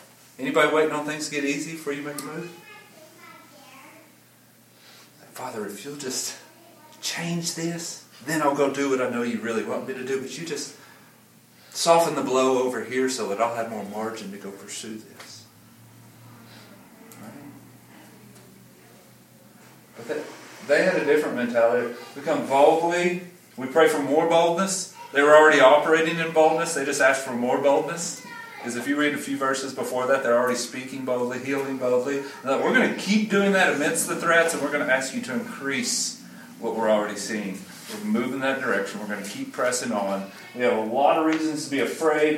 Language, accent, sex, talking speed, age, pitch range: English, American, male, 185 wpm, 40-59, 125-160 Hz